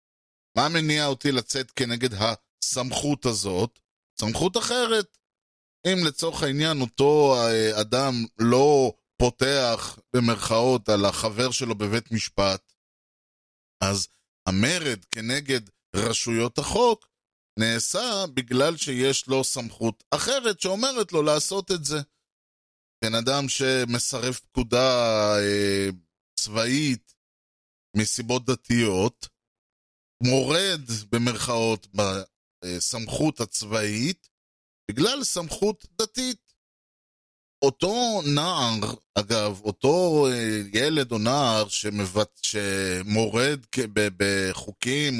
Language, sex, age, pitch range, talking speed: Hebrew, male, 20-39, 105-140 Hz, 85 wpm